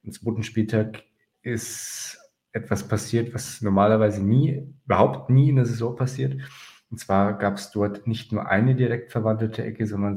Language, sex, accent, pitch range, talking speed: German, male, German, 100-115 Hz, 160 wpm